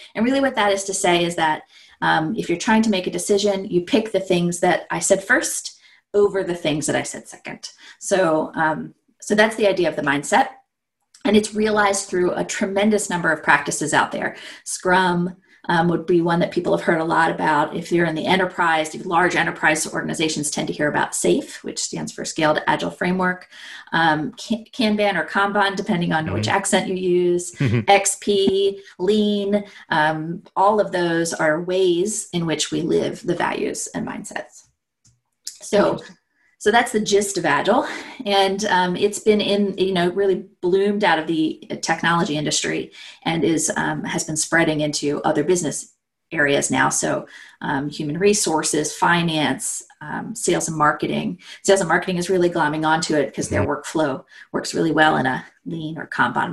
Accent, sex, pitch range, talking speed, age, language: American, female, 165-205 Hz, 180 wpm, 30-49, English